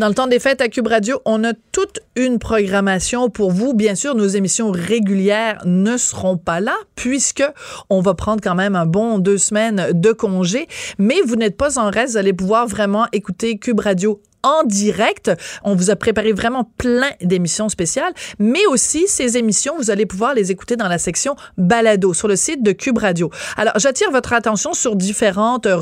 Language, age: French, 30-49